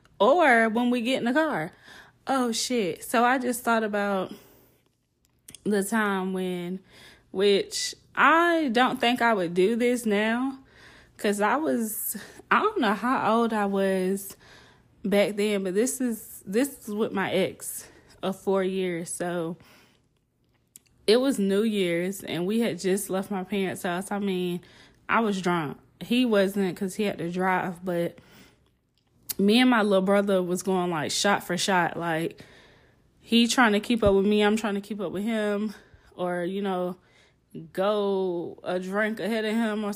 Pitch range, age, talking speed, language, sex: 185-225 Hz, 20-39, 165 wpm, English, female